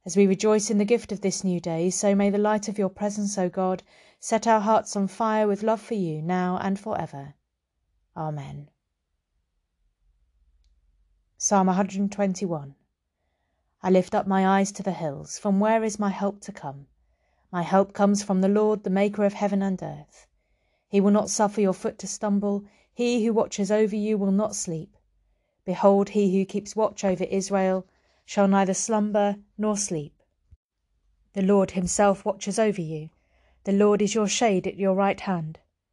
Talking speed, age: 175 wpm, 30-49